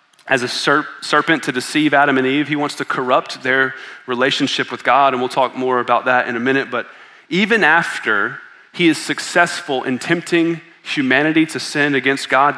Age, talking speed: 30-49, 180 wpm